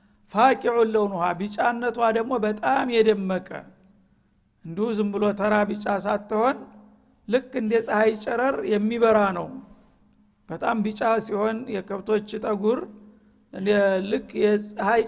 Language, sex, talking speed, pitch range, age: Amharic, male, 105 wpm, 205-230 Hz, 60-79